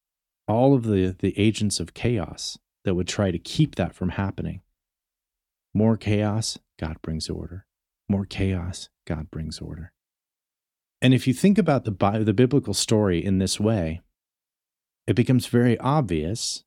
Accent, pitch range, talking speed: American, 85-120 Hz, 150 wpm